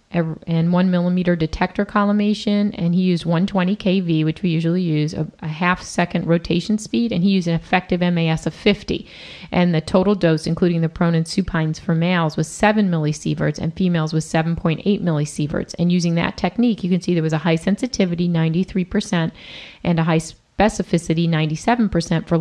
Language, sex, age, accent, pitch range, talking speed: English, female, 30-49, American, 165-190 Hz, 175 wpm